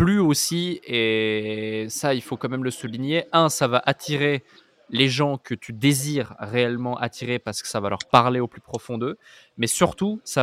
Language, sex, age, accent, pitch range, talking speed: French, male, 20-39, French, 120-145 Hz, 195 wpm